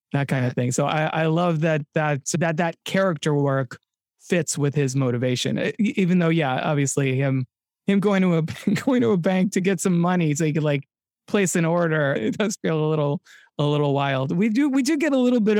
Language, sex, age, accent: English, male, 20-39, American